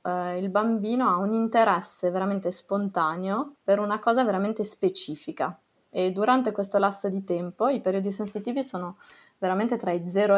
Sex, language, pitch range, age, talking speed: female, French, 180-210 Hz, 20-39, 150 wpm